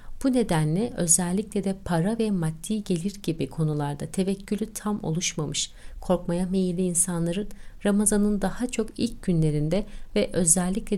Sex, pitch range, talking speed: female, 165-200 Hz, 125 wpm